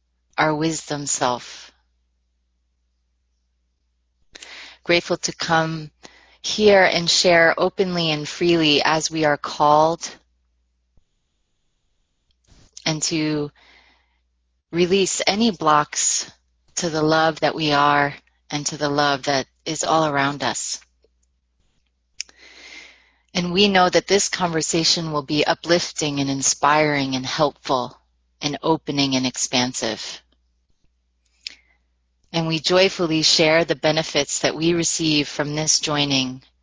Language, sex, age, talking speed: English, female, 30-49, 105 wpm